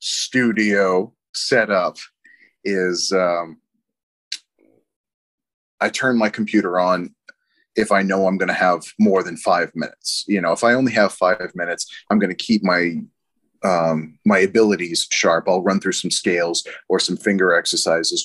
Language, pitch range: English, 90-110 Hz